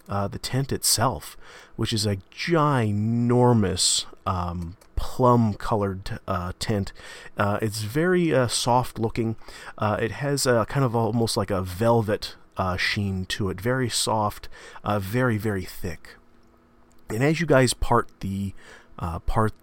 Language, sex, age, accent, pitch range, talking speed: English, male, 30-49, American, 100-120 Hz, 140 wpm